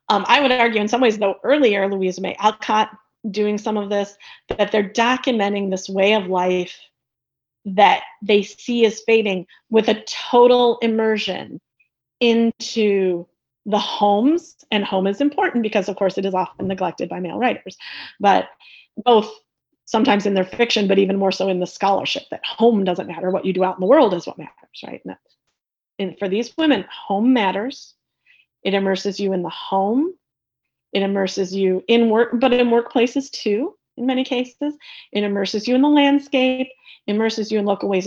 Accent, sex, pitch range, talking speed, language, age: American, female, 195-255 Hz, 180 wpm, English, 30-49